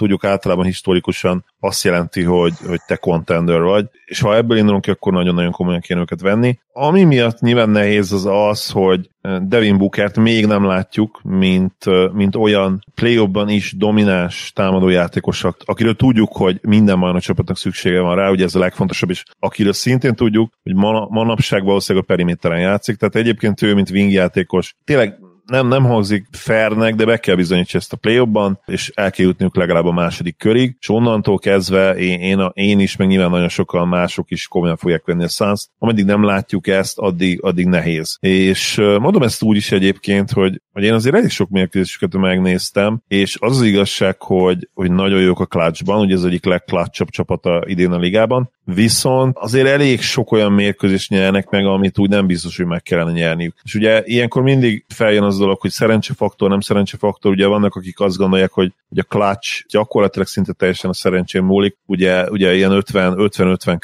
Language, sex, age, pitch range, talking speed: Hungarian, male, 30-49, 90-105 Hz, 185 wpm